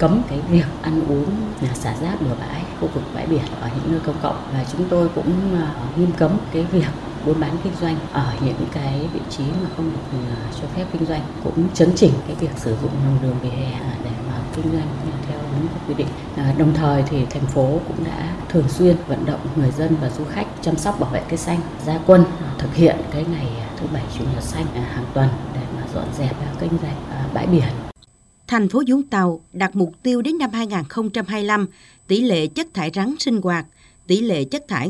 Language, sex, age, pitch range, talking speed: Vietnamese, female, 20-39, 150-215 Hz, 220 wpm